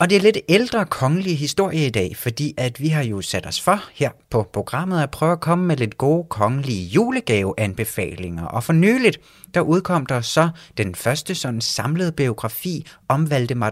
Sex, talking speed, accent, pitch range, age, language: male, 190 wpm, native, 105-155 Hz, 30-49, Danish